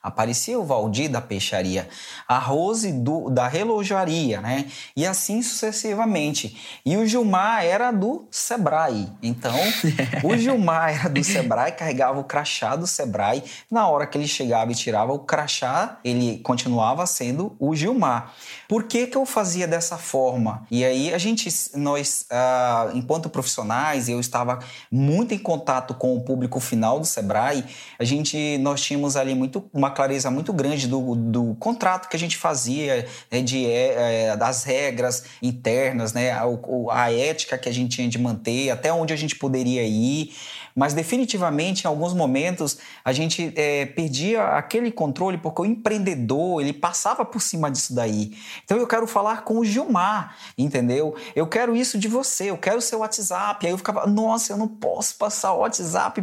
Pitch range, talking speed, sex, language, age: 125-205 Hz, 170 wpm, male, Portuguese, 20-39